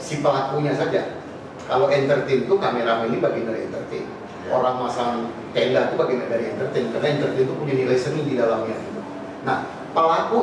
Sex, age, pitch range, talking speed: male, 30-49, 130-190 Hz, 160 wpm